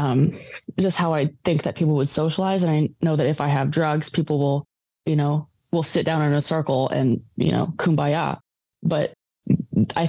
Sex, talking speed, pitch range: female, 195 wpm, 145-165 Hz